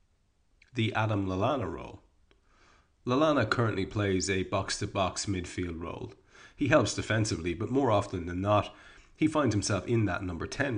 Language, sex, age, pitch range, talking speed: English, male, 30-49, 90-115 Hz, 145 wpm